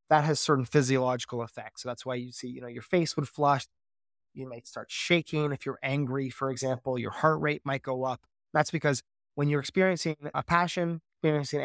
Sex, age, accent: male, 20-39, American